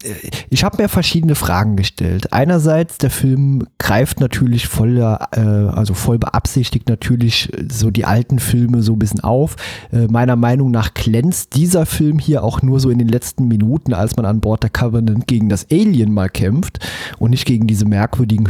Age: 30-49